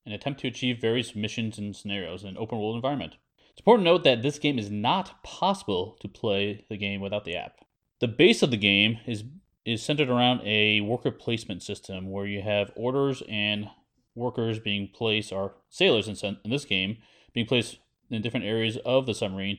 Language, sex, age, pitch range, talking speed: English, male, 30-49, 100-125 Hz, 195 wpm